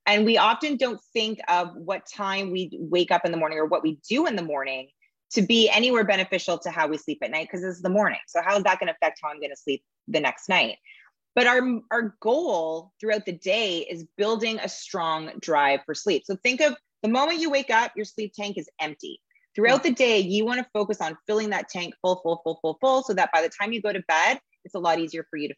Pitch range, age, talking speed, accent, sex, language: 160-225 Hz, 30-49, 260 wpm, American, female, English